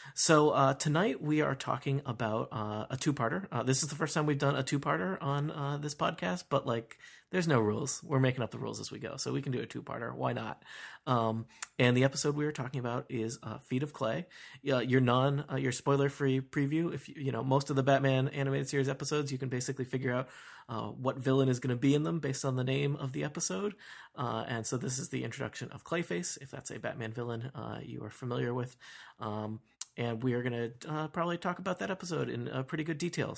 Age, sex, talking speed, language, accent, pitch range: 30-49, male, 240 wpm, English, American, 120-150 Hz